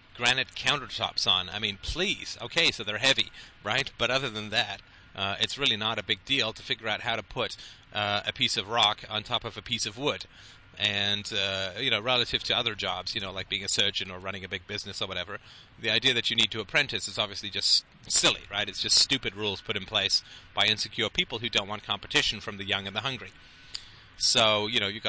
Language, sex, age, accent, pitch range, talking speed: English, male, 30-49, American, 100-120 Hz, 230 wpm